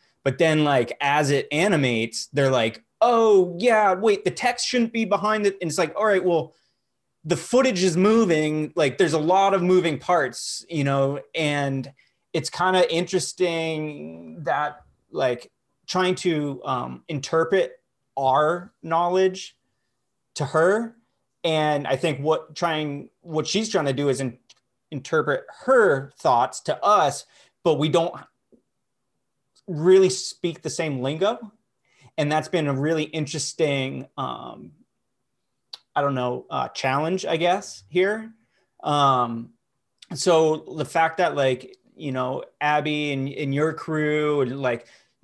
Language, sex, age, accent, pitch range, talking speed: English, male, 30-49, American, 140-180 Hz, 140 wpm